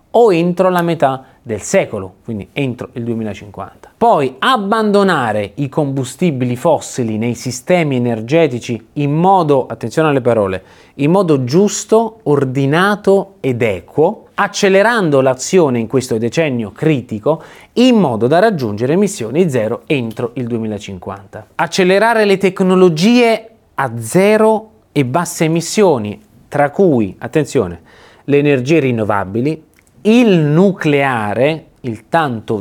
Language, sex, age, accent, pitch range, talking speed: Italian, male, 30-49, native, 115-175 Hz, 115 wpm